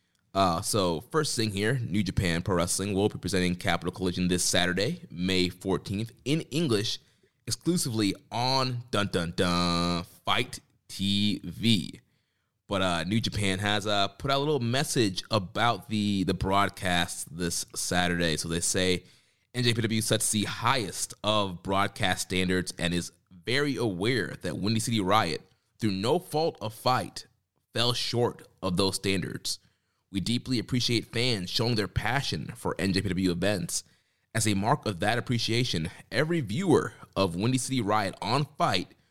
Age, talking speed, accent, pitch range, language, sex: 30-49, 145 wpm, American, 95-125 Hz, English, male